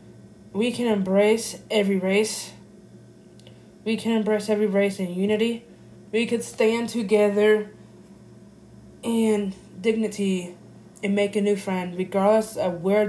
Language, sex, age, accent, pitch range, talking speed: English, female, 20-39, American, 190-225 Hz, 120 wpm